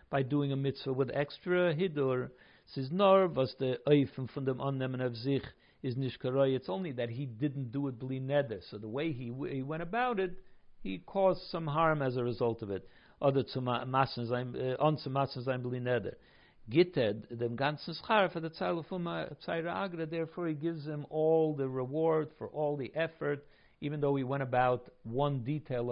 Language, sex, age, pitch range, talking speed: English, male, 50-69, 125-150 Hz, 120 wpm